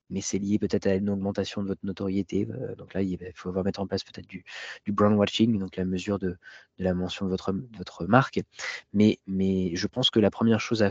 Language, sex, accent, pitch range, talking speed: French, male, French, 95-115 Hz, 235 wpm